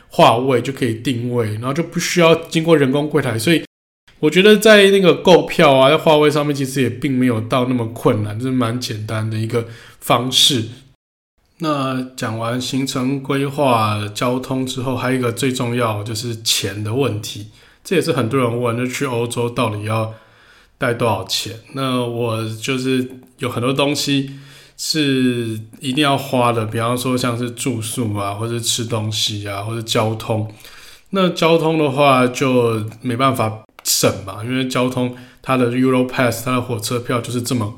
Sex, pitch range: male, 115-140 Hz